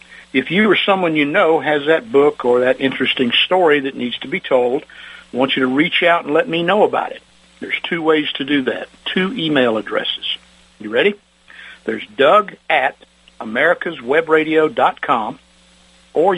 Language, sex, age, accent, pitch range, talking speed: English, male, 60-79, American, 130-175 Hz, 170 wpm